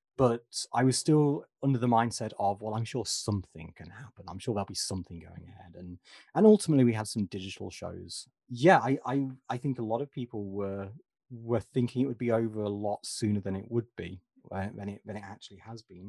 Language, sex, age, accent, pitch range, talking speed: English, male, 30-49, British, 95-125 Hz, 225 wpm